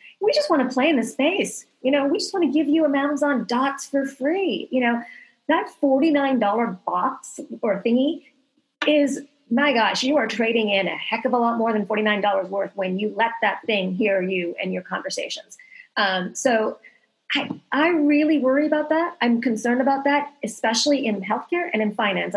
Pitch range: 210-280 Hz